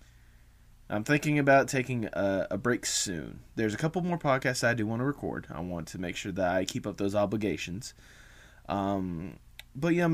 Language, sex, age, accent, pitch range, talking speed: English, male, 20-39, American, 85-120 Hz, 200 wpm